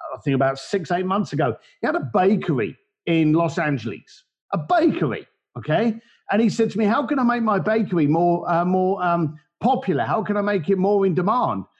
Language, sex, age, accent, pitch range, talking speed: English, male, 50-69, British, 160-225 Hz, 210 wpm